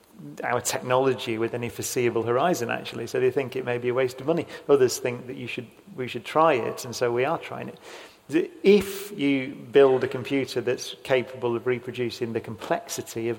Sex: male